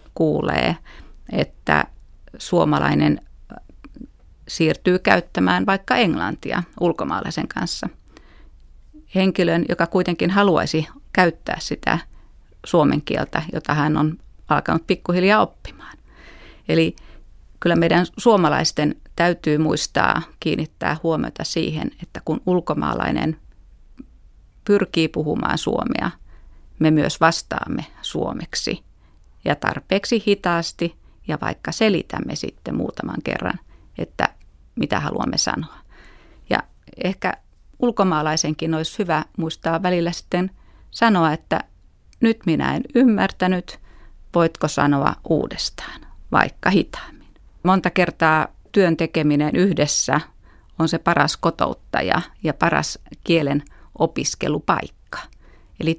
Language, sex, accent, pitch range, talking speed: Finnish, female, native, 155-185 Hz, 95 wpm